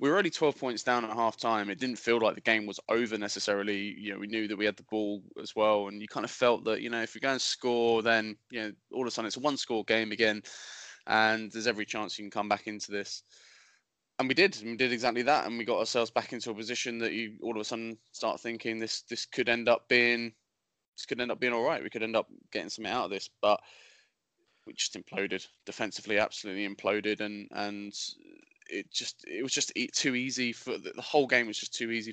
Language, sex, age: English, male, 20-39